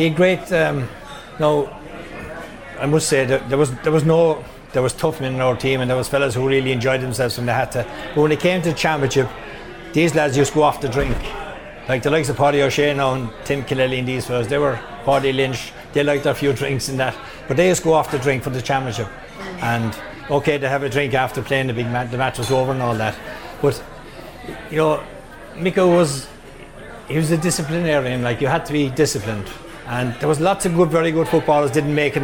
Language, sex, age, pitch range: English, male, 60-79, 130-160 Hz